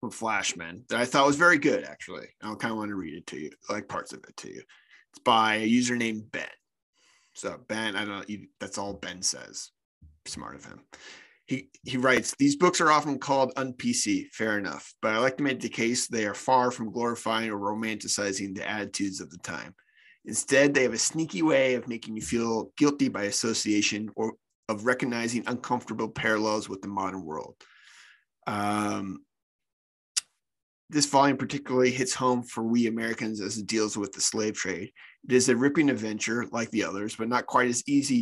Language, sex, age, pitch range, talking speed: English, male, 30-49, 105-125 Hz, 195 wpm